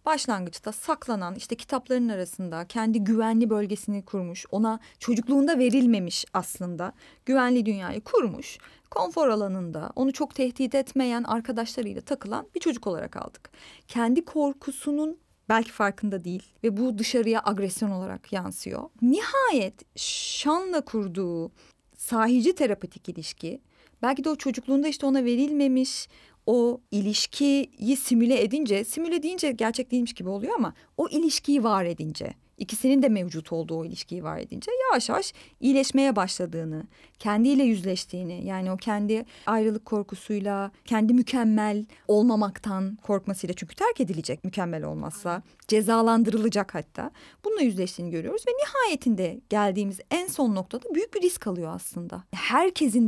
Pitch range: 200-275 Hz